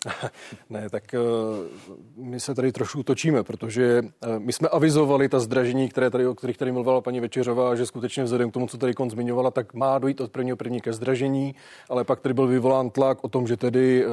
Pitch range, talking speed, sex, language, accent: 120-130 Hz, 190 wpm, male, Czech, native